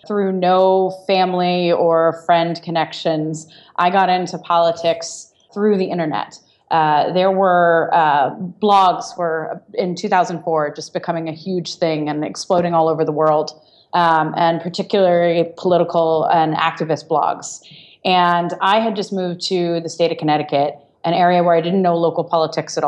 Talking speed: 150 wpm